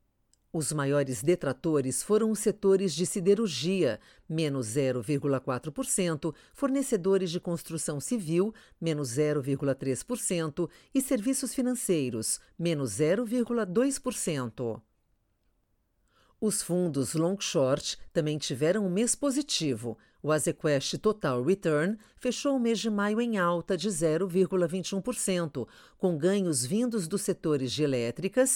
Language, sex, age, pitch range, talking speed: Portuguese, female, 50-69, 135-215 Hz, 105 wpm